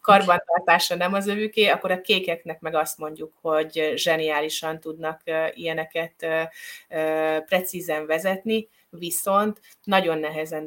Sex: female